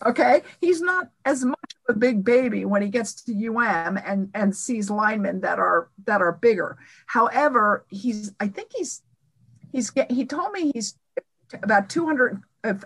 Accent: American